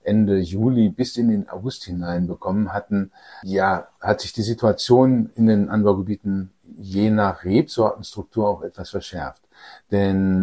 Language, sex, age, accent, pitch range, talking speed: German, male, 50-69, German, 95-110 Hz, 140 wpm